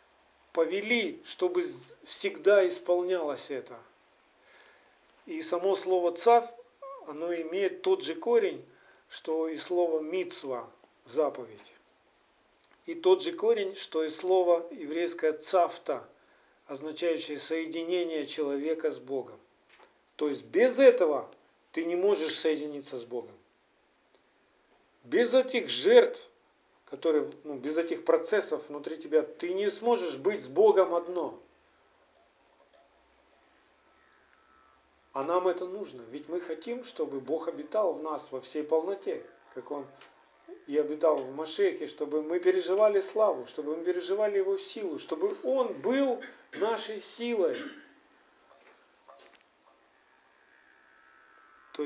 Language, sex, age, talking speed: Russian, male, 50-69, 110 wpm